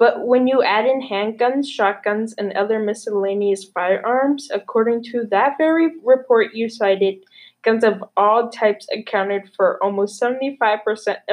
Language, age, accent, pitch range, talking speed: English, 10-29, American, 200-230 Hz, 140 wpm